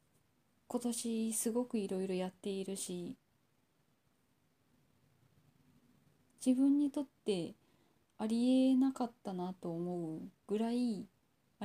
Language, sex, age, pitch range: Japanese, female, 20-39, 185-245 Hz